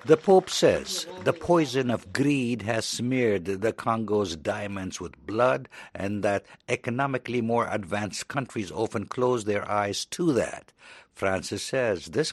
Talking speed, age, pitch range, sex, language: 140 wpm, 60-79, 100-135 Hz, male, English